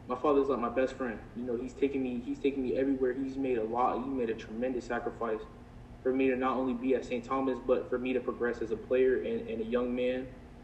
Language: English